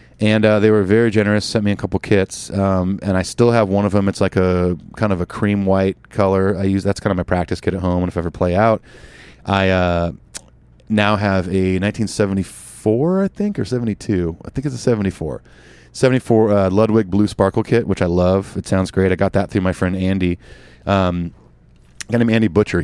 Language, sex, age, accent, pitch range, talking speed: English, male, 30-49, American, 90-110 Hz, 220 wpm